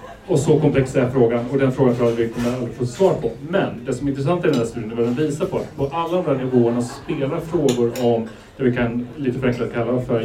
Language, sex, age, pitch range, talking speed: English, male, 30-49, 115-140 Hz, 270 wpm